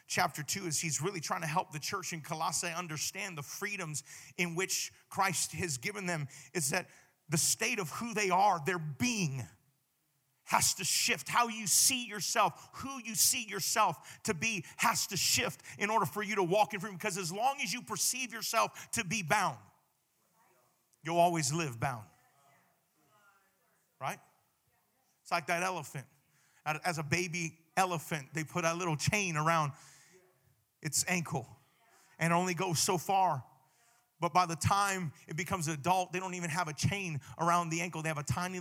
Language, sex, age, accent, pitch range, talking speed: English, male, 40-59, American, 140-185 Hz, 175 wpm